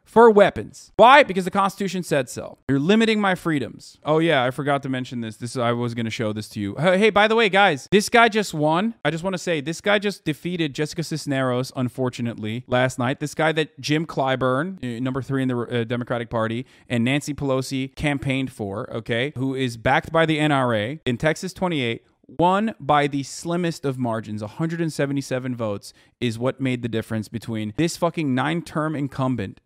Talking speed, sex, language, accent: 190 wpm, male, English, American